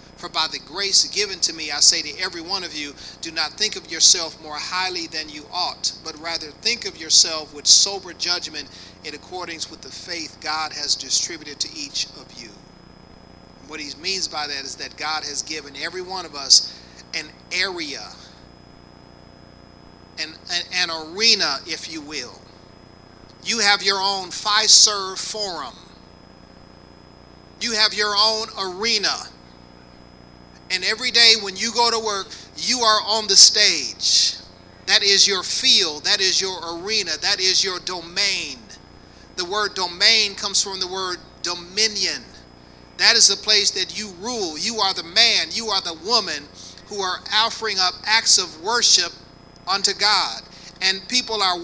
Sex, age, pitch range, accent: male, 40-59, 145-205 Hz, American